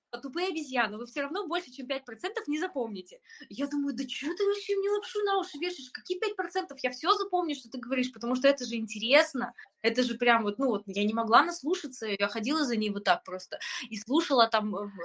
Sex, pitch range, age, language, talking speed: female, 200-275 Hz, 20-39, Russian, 220 wpm